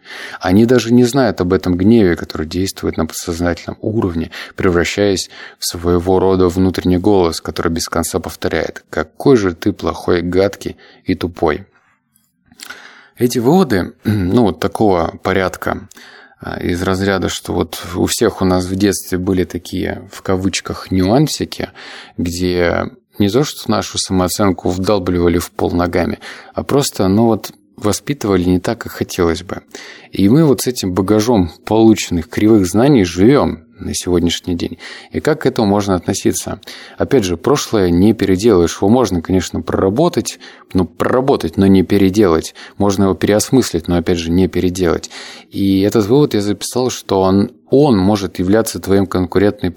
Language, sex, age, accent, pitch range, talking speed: Russian, male, 30-49, native, 90-105 Hz, 150 wpm